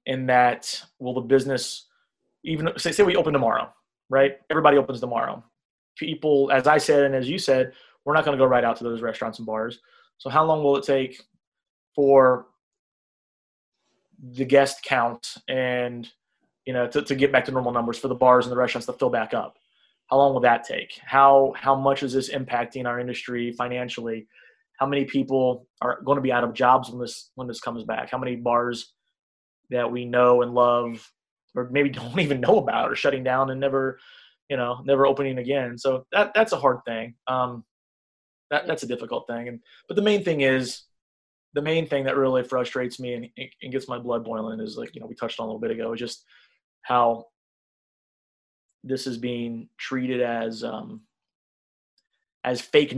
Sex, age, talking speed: male, 20-39, 195 wpm